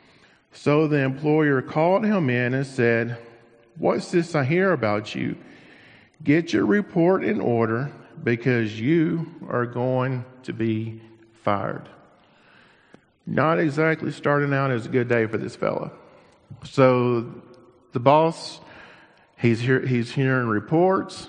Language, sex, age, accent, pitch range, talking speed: English, male, 50-69, American, 115-150 Hz, 125 wpm